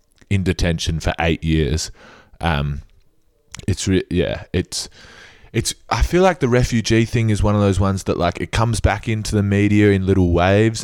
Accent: Australian